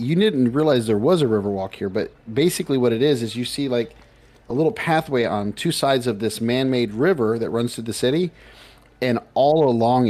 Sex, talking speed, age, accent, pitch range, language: male, 215 wpm, 40-59, American, 105-130 Hz, English